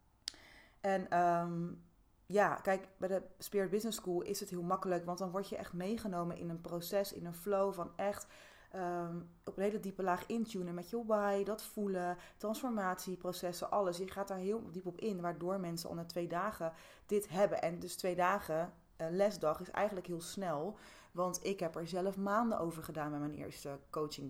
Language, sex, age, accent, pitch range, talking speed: Dutch, female, 30-49, Dutch, 165-210 Hz, 190 wpm